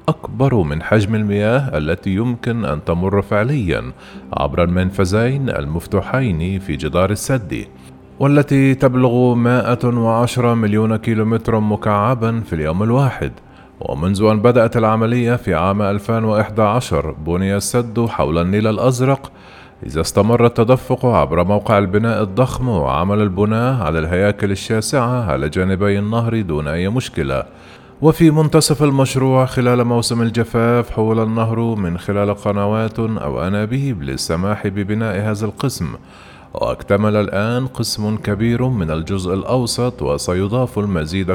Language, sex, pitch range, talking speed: Arabic, male, 95-120 Hz, 115 wpm